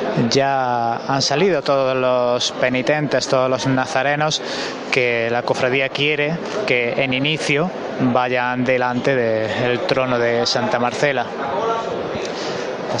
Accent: Spanish